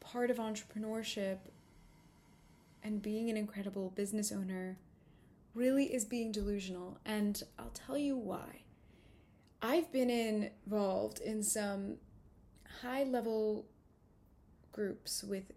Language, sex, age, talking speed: English, female, 20-39, 100 wpm